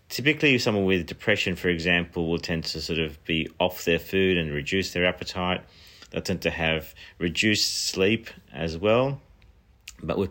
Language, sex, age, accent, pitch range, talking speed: English, male, 40-59, Australian, 80-100 Hz, 170 wpm